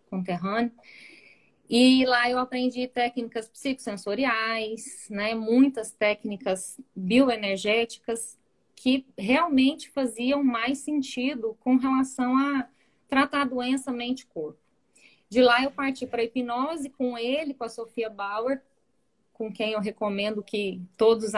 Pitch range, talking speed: 205-260 Hz, 115 wpm